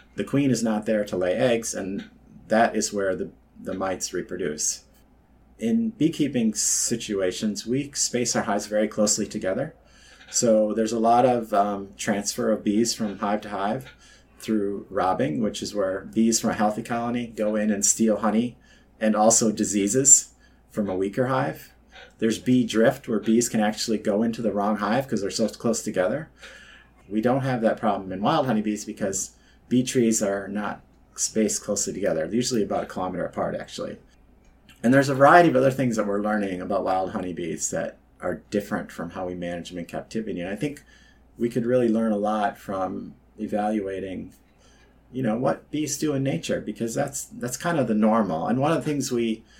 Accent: American